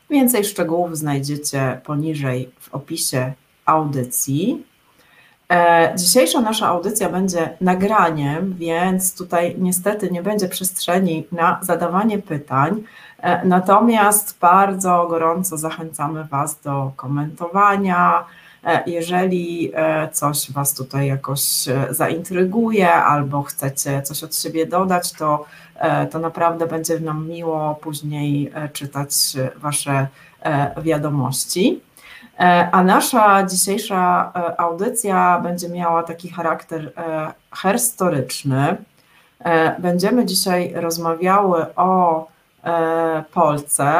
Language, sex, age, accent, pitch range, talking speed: Polish, female, 30-49, native, 150-180 Hz, 85 wpm